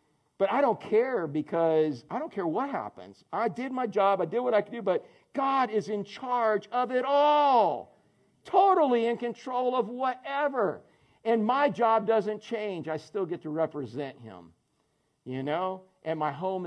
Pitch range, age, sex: 155-240 Hz, 50-69, male